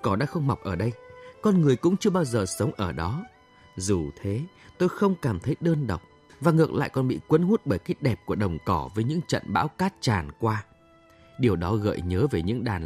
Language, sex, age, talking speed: Vietnamese, male, 20-39, 235 wpm